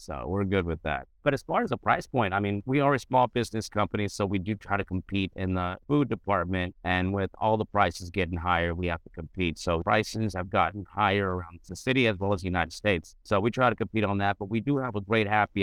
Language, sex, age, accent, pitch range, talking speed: English, male, 30-49, American, 95-115 Hz, 265 wpm